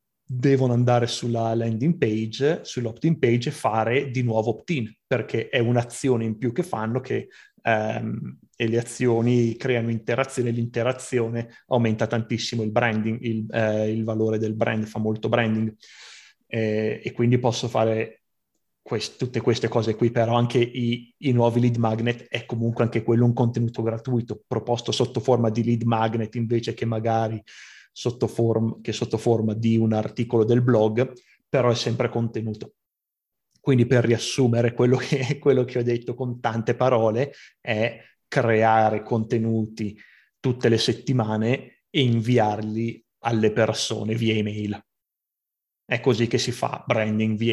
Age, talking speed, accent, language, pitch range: 30-49, 145 wpm, native, Italian, 110-120 Hz